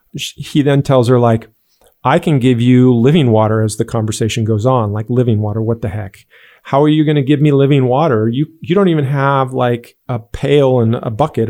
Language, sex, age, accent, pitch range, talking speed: English, male, 40-59, American, 120-145 Hz, 220 wpm